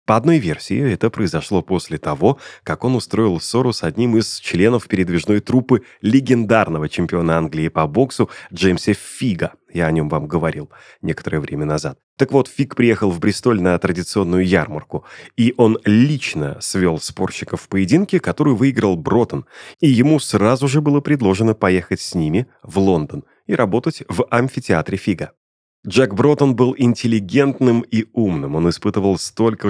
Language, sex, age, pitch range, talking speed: Russian, male, 30-49, 90-125 Hz, 155 wpm